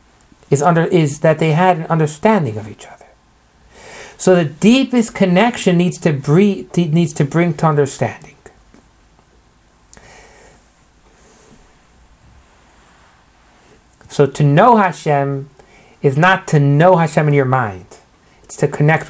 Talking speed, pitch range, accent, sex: 120 wpm, 140-180 Hz, American, male